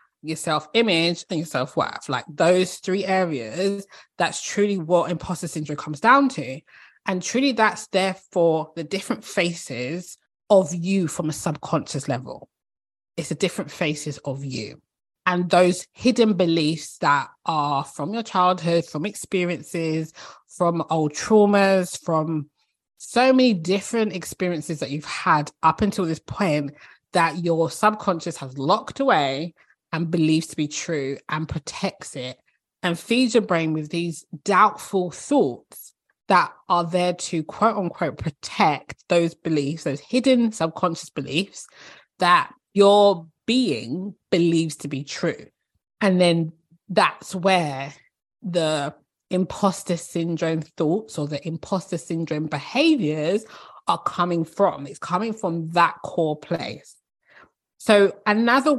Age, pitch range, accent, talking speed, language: 20-39, 155-195 Hz, British, 135 wpm, English